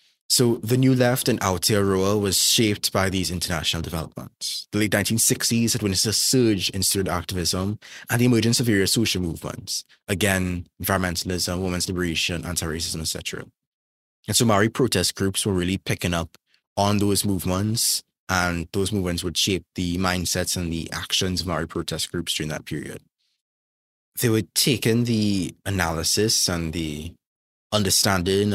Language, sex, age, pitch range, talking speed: English, male, 20-39, 85-105 Hz, 155 wpm